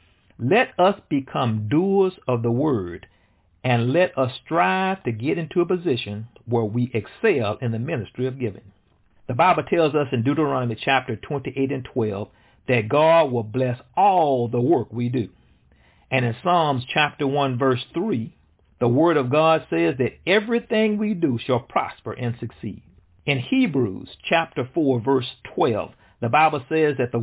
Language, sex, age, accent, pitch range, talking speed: English, male, 50-69, American, 115-155 Hz, 165 wpm